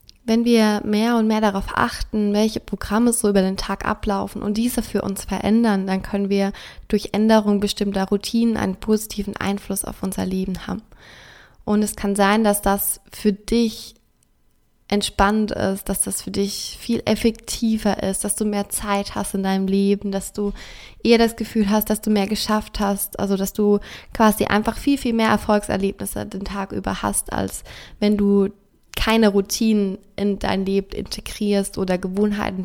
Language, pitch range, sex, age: German, 195-215 Hz, female, 20-39